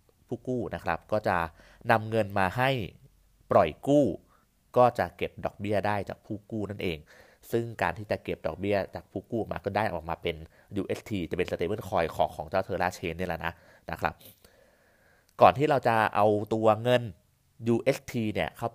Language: Thai